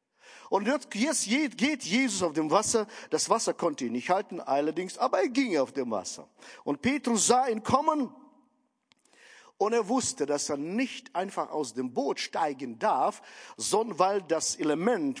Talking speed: 160 wpm